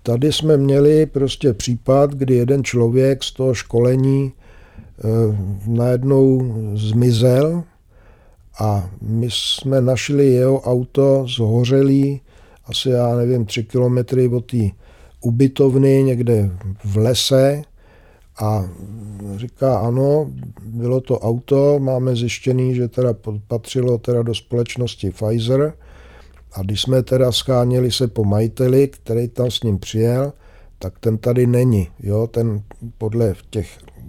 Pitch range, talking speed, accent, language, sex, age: 110-130 Hz, 120 wpm, native, Czech, male, 50-69